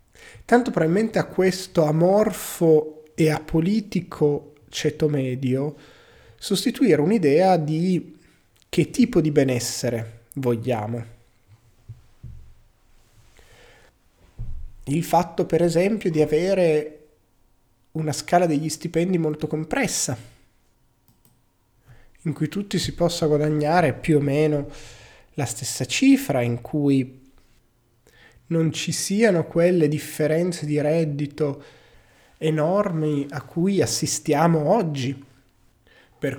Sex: male